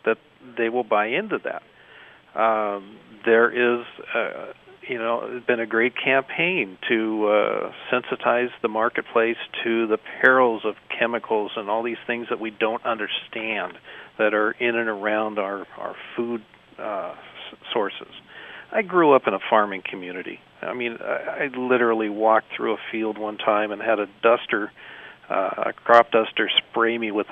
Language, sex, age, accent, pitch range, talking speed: English, male, 50-69, American, 105-120 Hz, 165 wpm